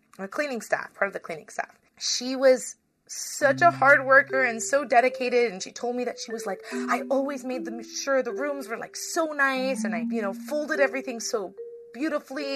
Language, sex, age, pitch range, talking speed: English, female, 30-49, 180-255 Hz, 205 wpm